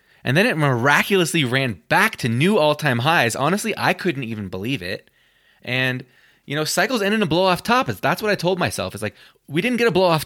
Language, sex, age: English, male, 20-39